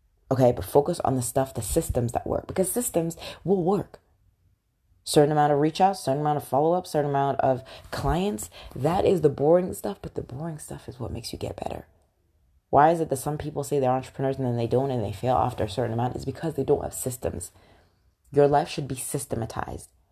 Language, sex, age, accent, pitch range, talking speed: English, female, 20-39, American, 115-140 Hz, 220 wpm